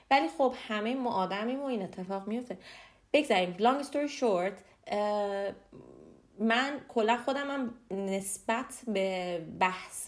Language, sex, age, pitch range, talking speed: Persian, female, 30-49, 185-235 Hz, 125 wpm